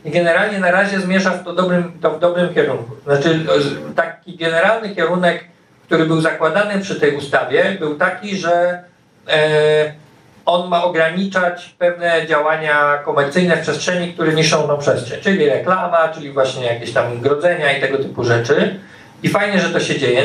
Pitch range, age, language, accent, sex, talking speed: 145-175 Hz, 50-69, Polish, native, male, 150 wpm